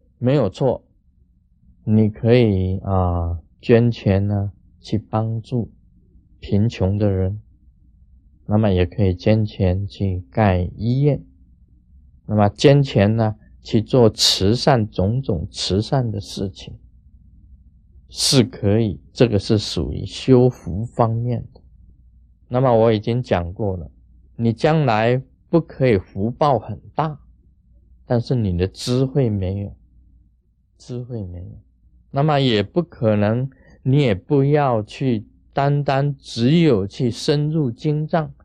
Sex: male